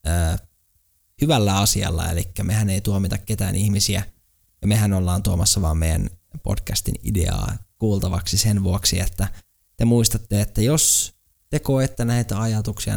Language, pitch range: Finnish, 95-115 Hz